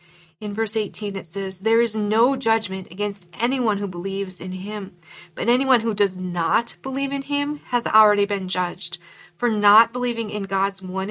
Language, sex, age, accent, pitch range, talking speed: English, female, 40-59, American, 185-225 Hz, 180 wpm